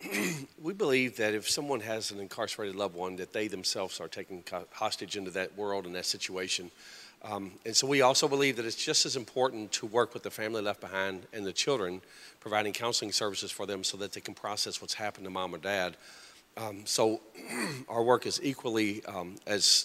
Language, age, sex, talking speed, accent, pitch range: English, 40-59, male, 205 wpm, American, 100-115 Hz